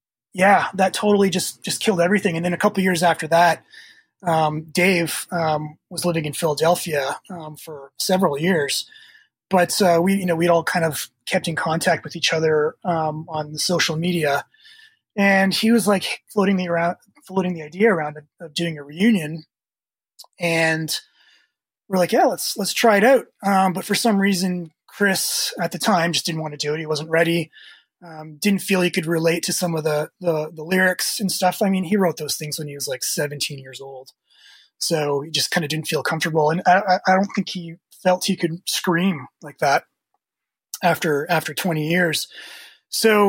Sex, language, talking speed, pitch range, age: male, English, 195 wpm, 160-190 Hz, 20-39